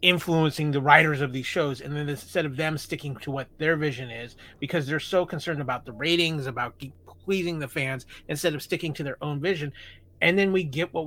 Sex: male